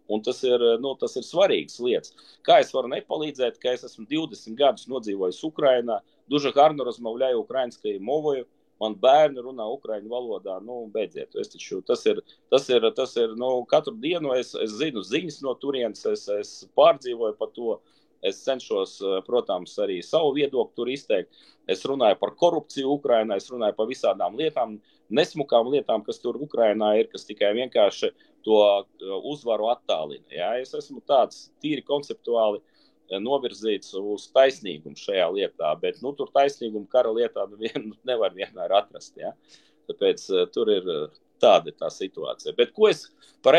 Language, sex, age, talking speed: English, male, 30-49, 160 wpm